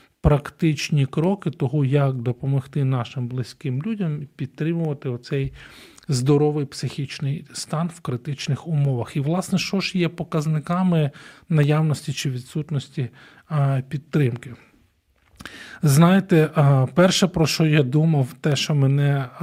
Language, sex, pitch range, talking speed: Ukrainian, male, 130-155 Hz, 110 wpm